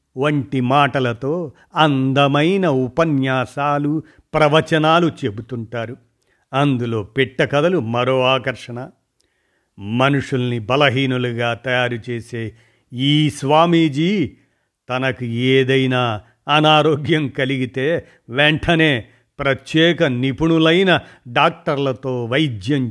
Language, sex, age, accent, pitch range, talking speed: Telugu, male, 50-69, native, 125-155 Hz, 70 wpm